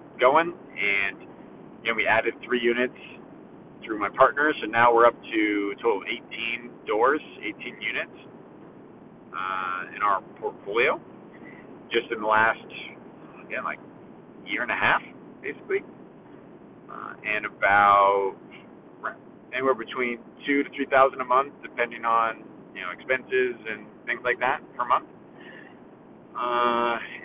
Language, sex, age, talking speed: English, male, 40-59, 135 wpm